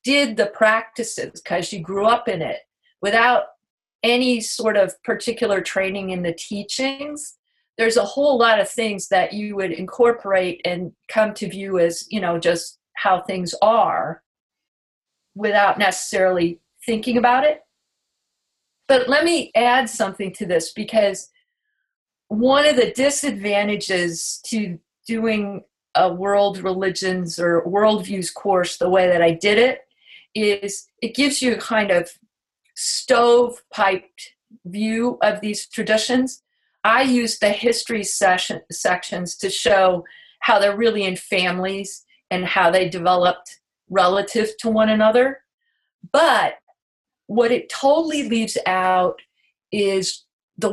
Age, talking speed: 40-59, 130 wpm